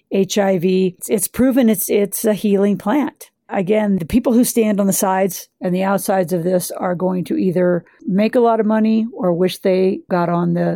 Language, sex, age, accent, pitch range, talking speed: English, female, 50-69, American, 180-205 Hz, 200 wpm